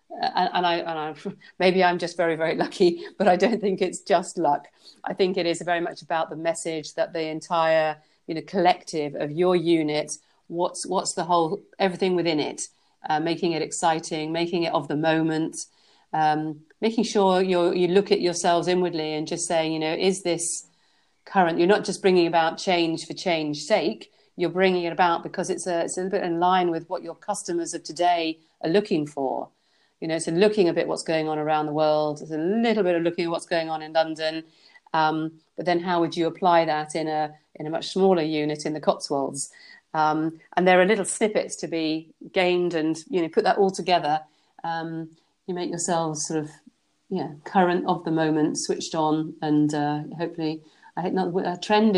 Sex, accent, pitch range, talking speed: female, British, 160-185 Hz, 210 wpm